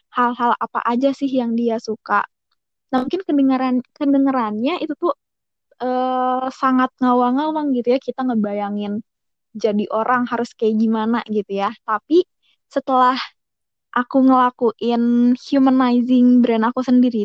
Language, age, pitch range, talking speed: Indonesian, 20-39, 225-260 Hz, 120 wpm